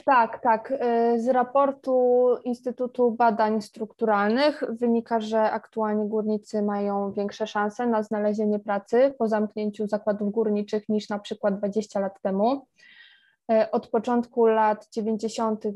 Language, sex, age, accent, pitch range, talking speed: Polish, female, 20-39, native, 210-245 Hz, 120 wpm